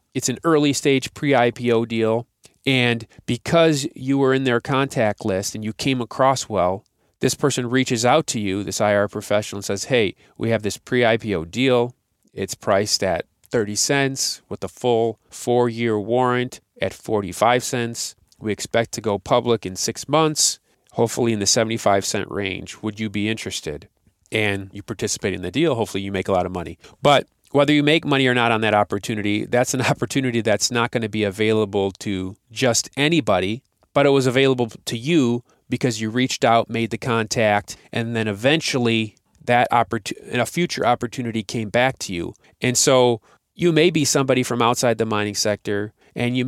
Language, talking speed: English, 180 wpm